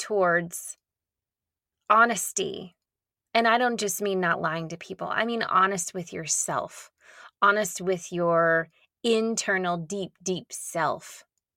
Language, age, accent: English, 20-39, American